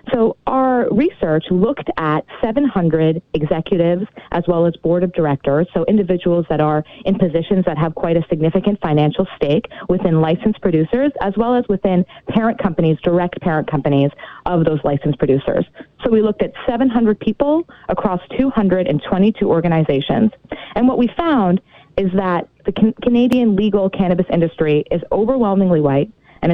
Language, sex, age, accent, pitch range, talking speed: English, female, 30-49, American, 165-220 Hz, 150 wpm